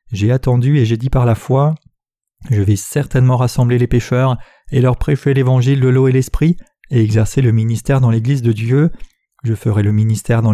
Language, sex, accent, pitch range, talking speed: French, male, French, 115-140 Hz, 200 wpm